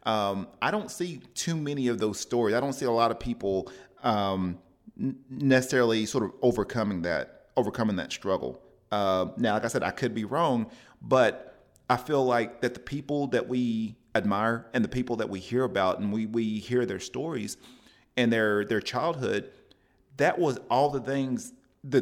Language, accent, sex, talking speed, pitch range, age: English, American, male, 185 wpm, 105-135 Hz, 30-49